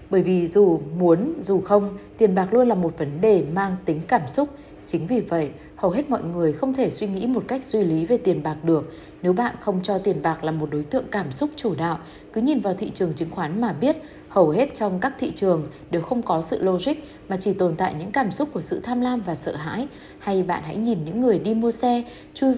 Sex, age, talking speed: female, 20-39, 250 wpm